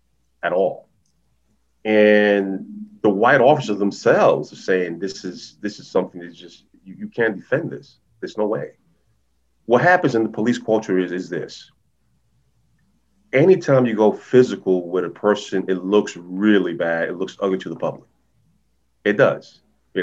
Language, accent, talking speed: English, American, 160 wpm